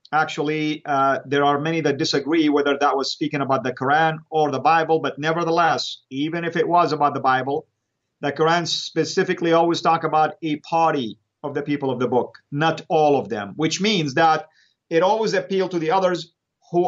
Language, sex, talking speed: English, male, 190 wpm